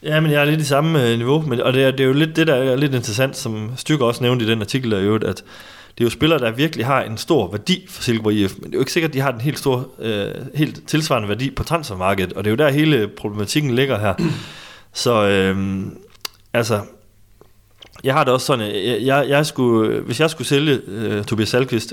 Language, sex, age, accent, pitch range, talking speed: Danish, male, 30-49, native, 100-125 Hz, 250 wpm